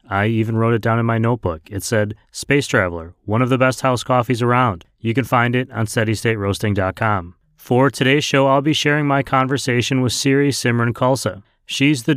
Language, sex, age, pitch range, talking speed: English, male, 30-49, 110-130 Hz, 190 wpm